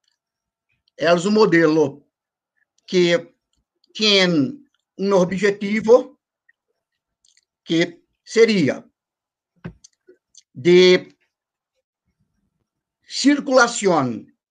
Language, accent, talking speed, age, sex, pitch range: Spanish, Brazilian, 45 wpm, 50-69, male, 190-250 Hz